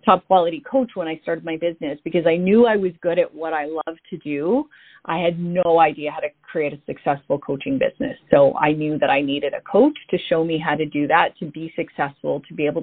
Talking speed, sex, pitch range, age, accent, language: 240 wpm, female, 155-185 Hz, 30-49, American, English